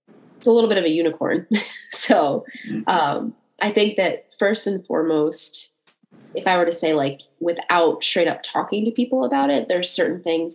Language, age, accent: English, 30-49, American